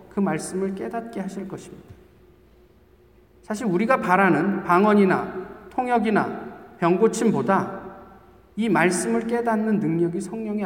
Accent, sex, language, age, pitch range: native, male, Korean, 40-59, 160-215 Hz